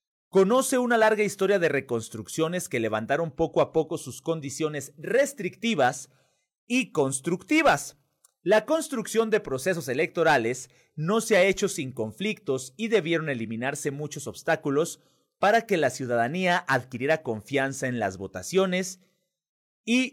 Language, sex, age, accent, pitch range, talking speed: Spanish, male, 40-59, Mexican, 130-195 Hz, 125 wpm